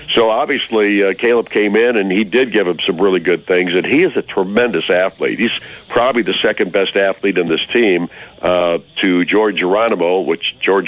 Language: English